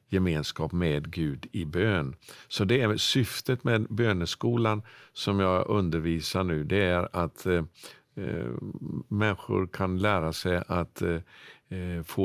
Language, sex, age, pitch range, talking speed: English, male, 50-69, 85-105 Hz, 120 wpm